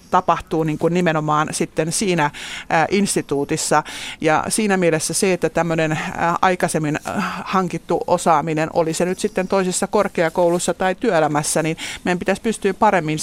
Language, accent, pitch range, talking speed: Finnish, native, 155-185 Hz, 130 wpm